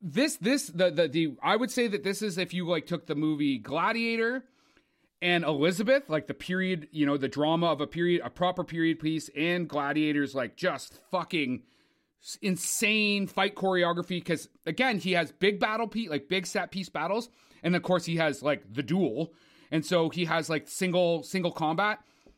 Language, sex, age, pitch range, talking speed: English, male, 30-49, 165-210 Hz, 190 wpm